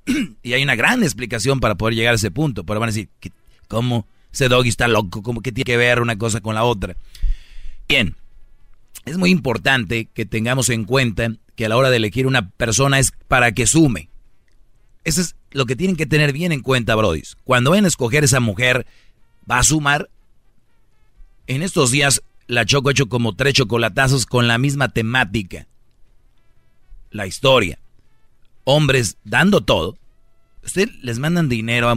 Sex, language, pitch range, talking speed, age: male, Spanish, 110-135 Hz, 175 wpm, 40-59